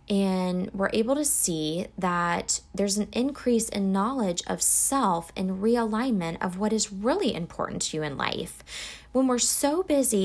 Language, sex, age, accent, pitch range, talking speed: English, female, 20-39, American, 170-235 Hz, 165 wpm